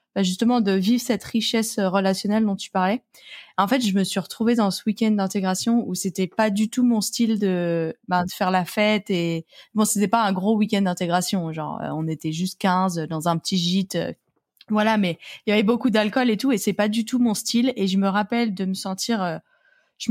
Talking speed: 220 wpm